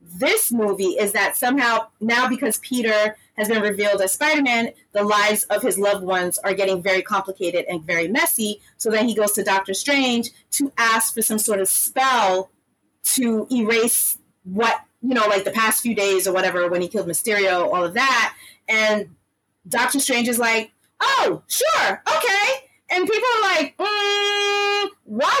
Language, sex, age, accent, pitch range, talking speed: English, female, 30-49, American, 210-305 Hz, 170 wpm